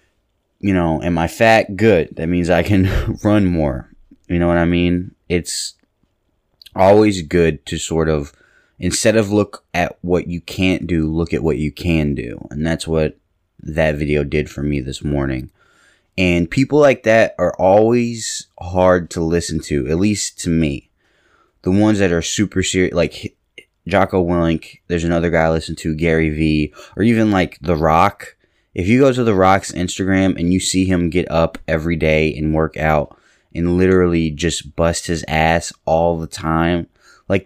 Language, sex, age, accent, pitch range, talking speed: English, male, 20-39, American, 80-95 Hz, 180 wpm